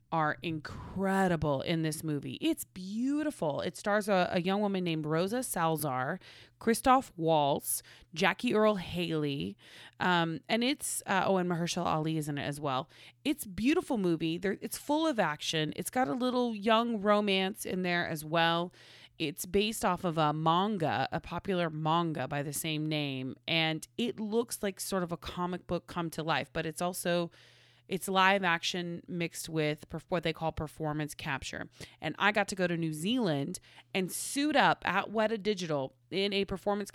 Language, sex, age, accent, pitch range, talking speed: English, female, 30-49, American, 155-205 Hz, 175 wpm